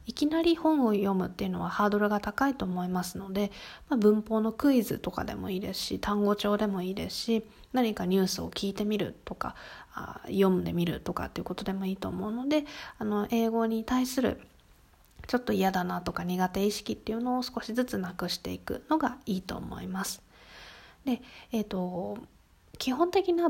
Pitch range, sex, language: 195-260 Hz, female, Japanese